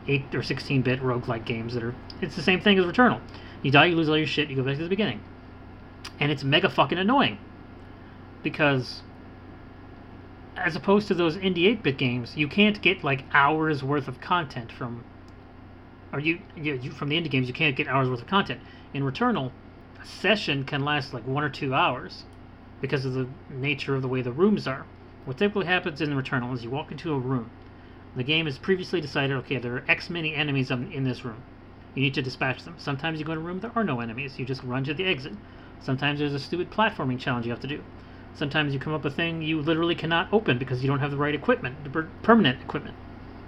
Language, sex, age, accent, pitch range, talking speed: English, male, 40-59, American, 115-160 Hz, 220 wpm